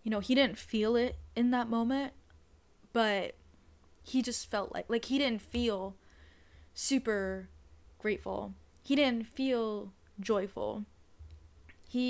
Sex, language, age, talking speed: female, English, 10-29, 125 wpm